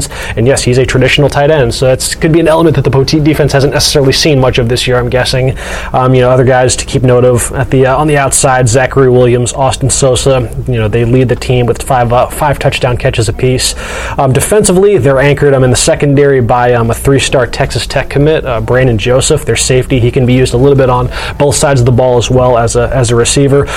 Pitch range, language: 125-145 Hz, English